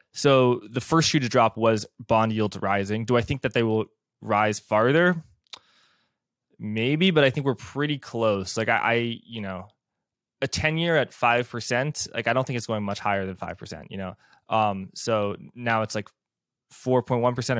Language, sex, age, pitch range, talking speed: English, male, 20-39, 105-130 Hz, 180 wpm